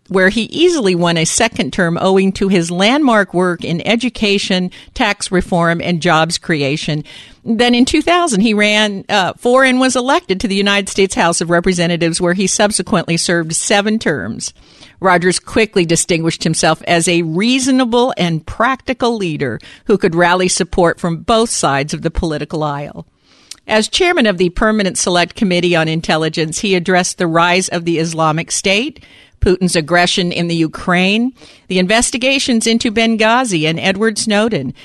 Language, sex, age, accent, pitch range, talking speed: English, female, 50-69, American, 170-230 Hz, 160 wpm